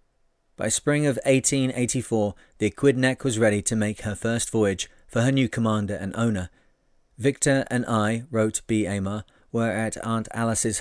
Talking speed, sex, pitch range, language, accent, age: 160 wpm, male, 105-120 Hz, English, British, 40-59